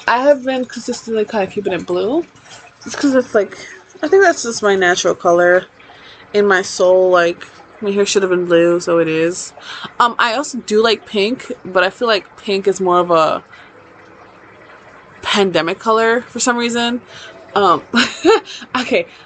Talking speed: 170 wpm